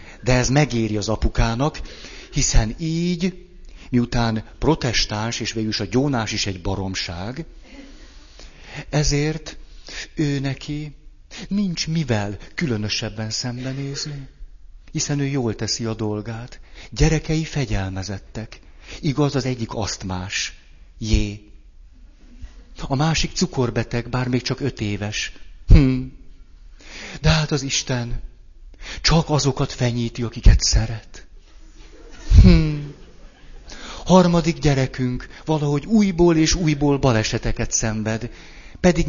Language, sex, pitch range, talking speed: Hungarian, male, 105-145 Hz, 100 wpm